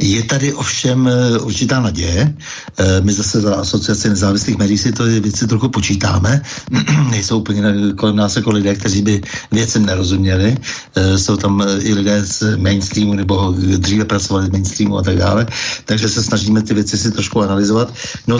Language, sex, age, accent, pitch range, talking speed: Czech, male, 60-79, native, 105-125 Hz, 160 wpm